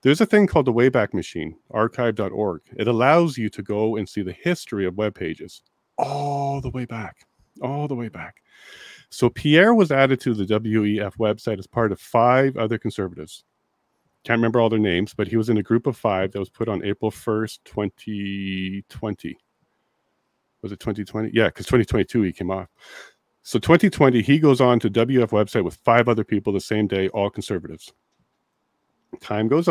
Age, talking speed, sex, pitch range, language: 40-59, 180 wpm, male, 105-130 Hz, English